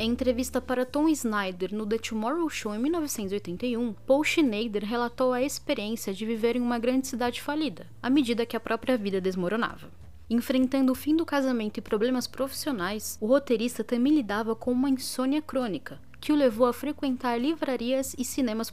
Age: 10-29